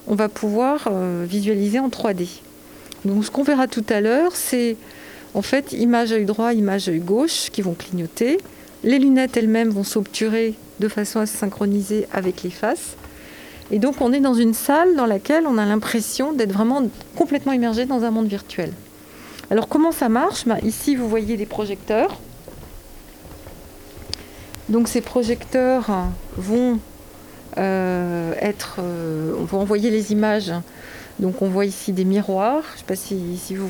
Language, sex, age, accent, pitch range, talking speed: French, female, 40-59, French, 195-240 Hz, 165 wpm